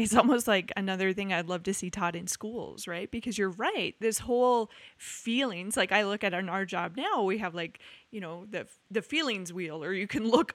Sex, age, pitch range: female, 20-39, 185-230 Hz